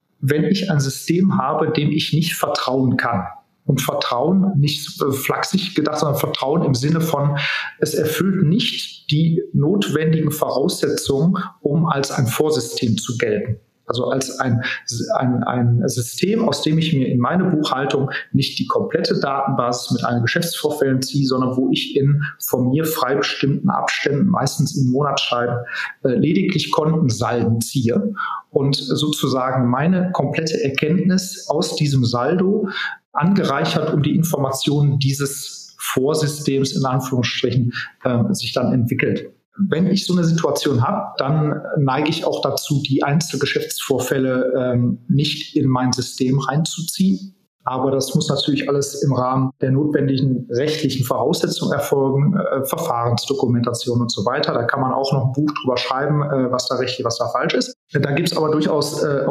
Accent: German